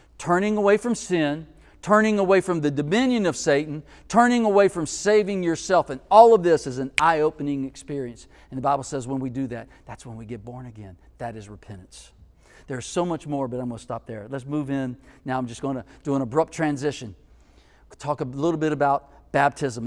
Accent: American